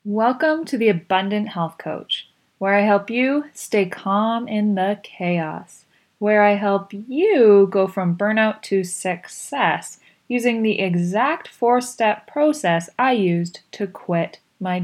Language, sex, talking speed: English, female, 140 wpm